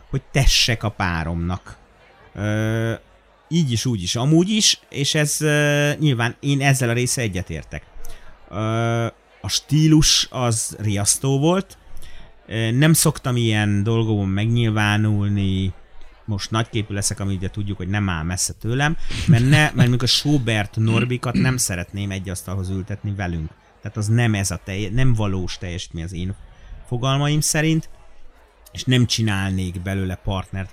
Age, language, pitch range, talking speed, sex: 30-49, Hungarian, 95-125 Hz, 140 wpm, male